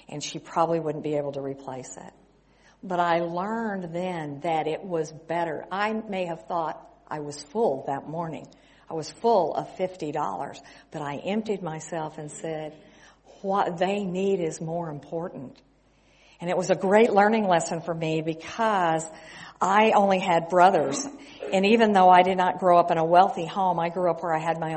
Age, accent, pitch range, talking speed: 50-69, American, 160-200 Hz, 185 wpm